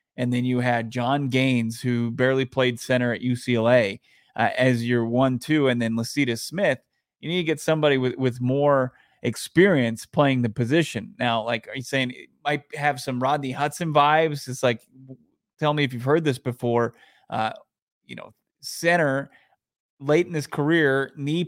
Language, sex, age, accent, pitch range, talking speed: English, male, 30-49, American, 125-150 Hz, 175 wpm